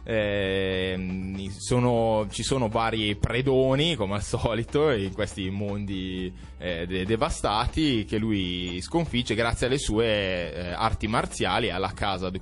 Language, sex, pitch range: Italian, male, 95-125 Hz